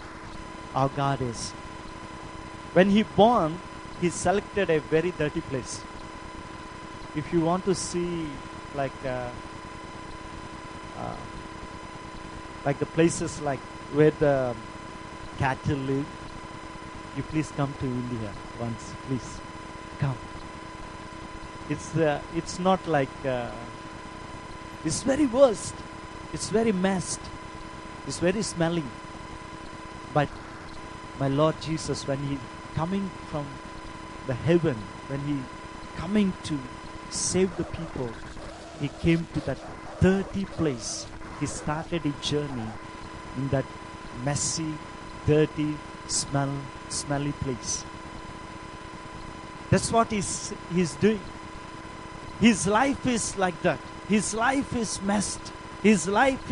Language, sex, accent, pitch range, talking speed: English, male, Indian, 140-190 Hz, 105 wpm